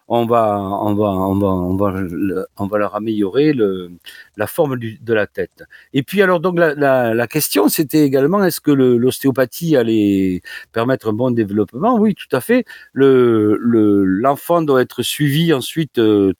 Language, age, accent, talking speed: French, 50-69, French, 185 wpm